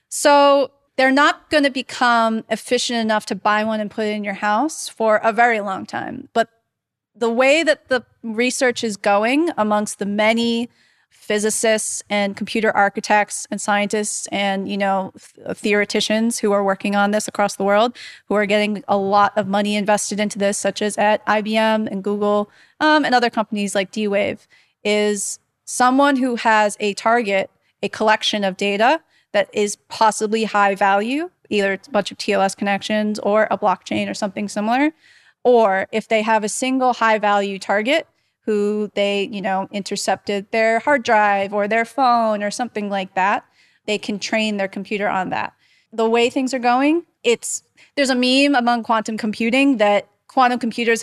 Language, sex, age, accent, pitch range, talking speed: English, female, 30-49, American, 205-240 Hz, 175 wpm